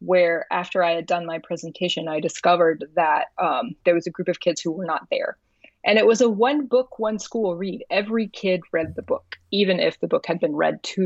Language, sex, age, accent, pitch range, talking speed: English, female, 20-39, American, 170-230 Hz, 235 wpm